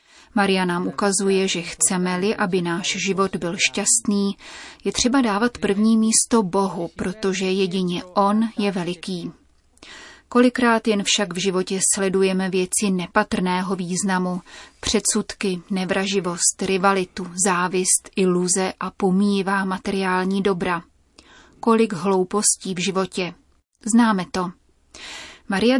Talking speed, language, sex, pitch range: 105 wpm, Czech, female, 185-210 Hz